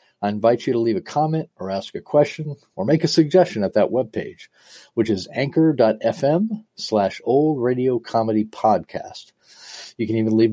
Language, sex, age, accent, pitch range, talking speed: English, male, 40-59, American, 105-160 Hz, 170 wpm